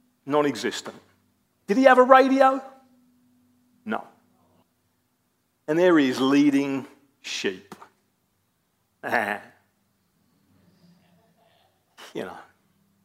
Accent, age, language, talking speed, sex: British, 40-59, English, 75 wpm, male